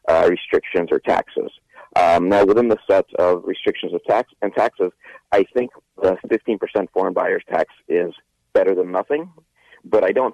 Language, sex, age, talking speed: English, male, 30-49, 170 wpm